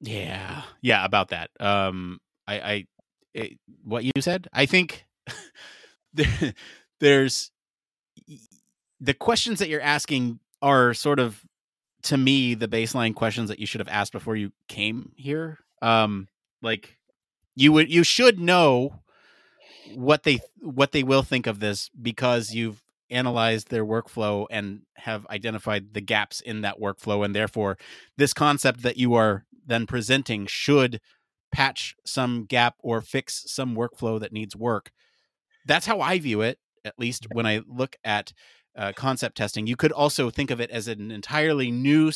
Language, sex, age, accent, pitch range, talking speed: English, male, 30-49, American, 110-135 Hz, 150 wpm